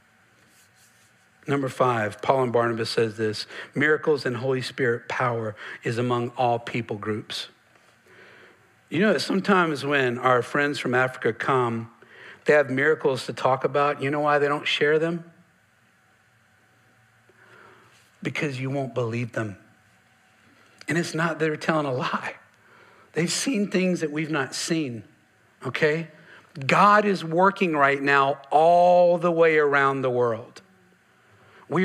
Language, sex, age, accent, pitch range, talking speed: English, male, 50-69, American, 125-160 Hz, 135 wpm